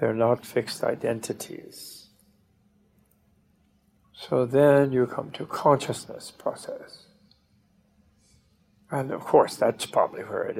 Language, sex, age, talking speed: English, male, 50-69, 100 wpm